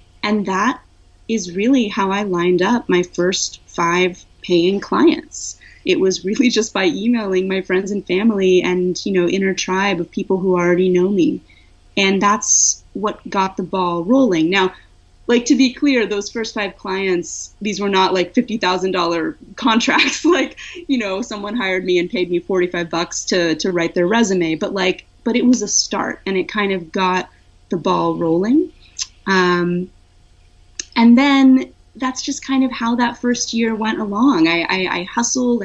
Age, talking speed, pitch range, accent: 30-49, 175 wpm, 180-245 Hz, American